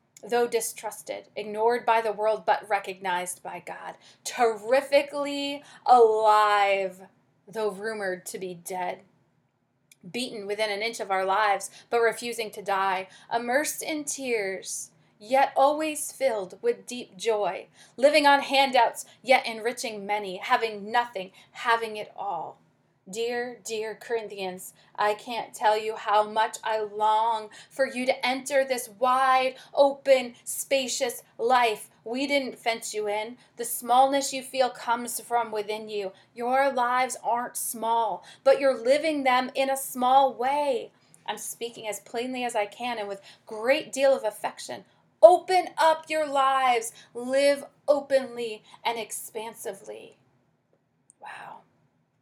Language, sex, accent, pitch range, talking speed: English, female, American, 210-260 Hz, 130 wpm